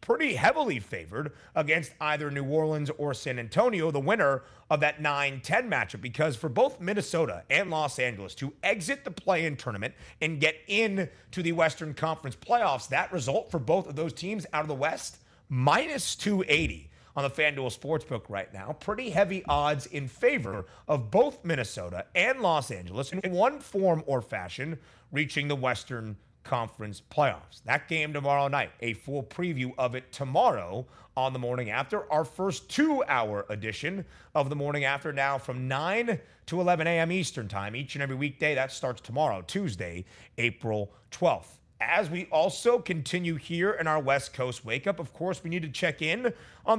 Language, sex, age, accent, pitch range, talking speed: English, male, 30-49, American, 125-175 Hz, 175 wpm